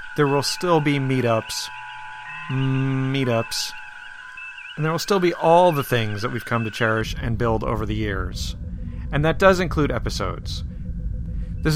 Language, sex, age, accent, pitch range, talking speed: English, male, 30-49, American, 115-145 Hz, 155 wpm